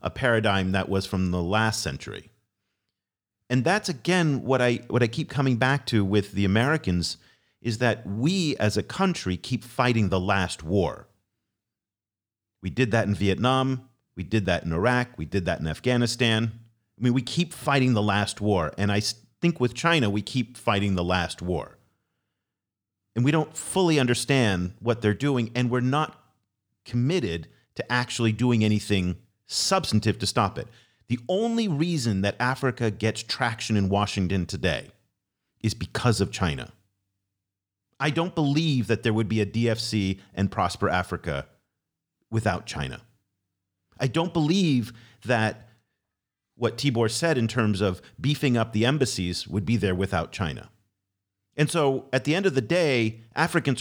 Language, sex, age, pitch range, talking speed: English, male, 40-59, 100-125 Hz, 160 wpm